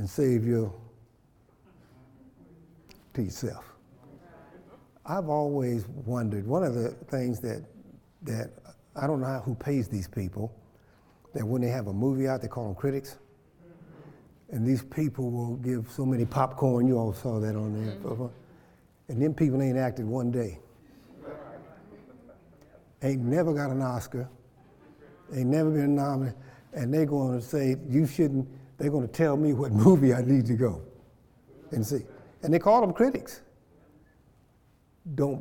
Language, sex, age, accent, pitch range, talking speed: English, male, 60-79, American, 115-140 Hz, 150 wpm